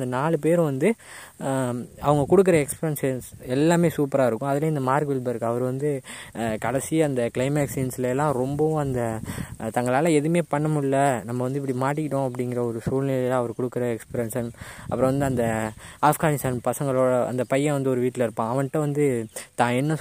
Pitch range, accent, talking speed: 120-140 Hz, native, 155 wpm